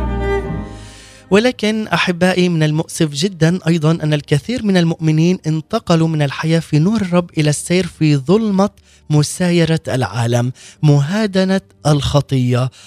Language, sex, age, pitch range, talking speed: Arabic, male, 20-39, 145-180 Hz, 110 wpm